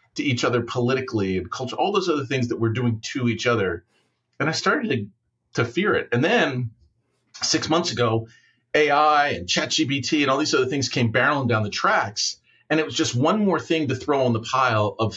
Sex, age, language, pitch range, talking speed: male, 40-59, English, 115-140 Hz, 215 wpm